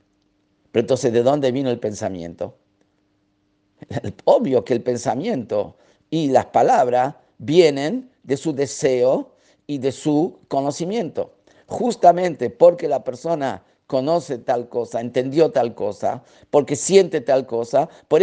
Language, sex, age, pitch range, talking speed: Spanish, male, 50-69, 110-160 Hz, 120 wpm